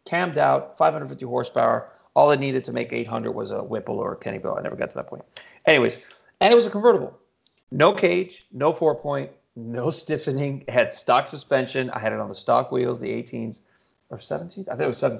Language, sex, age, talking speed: English, male, 30-49, 215 wpm